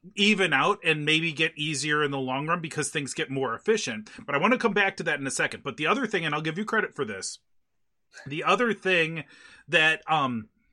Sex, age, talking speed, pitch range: male, 30-49, 235 wpm, 140-180 Hz